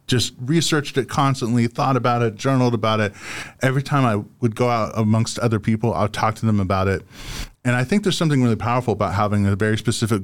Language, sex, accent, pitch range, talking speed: English, male, American, 105-130 Hz, 215 wpm